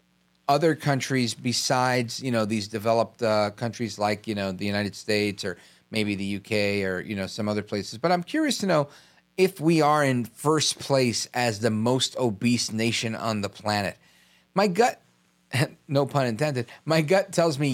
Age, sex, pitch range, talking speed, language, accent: 40-59, male, 110-145 Hz, 180 wpm, English, American